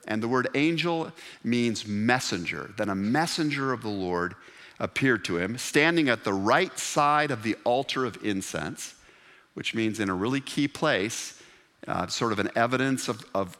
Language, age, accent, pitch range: English, 50-69, American, 130-205 Hz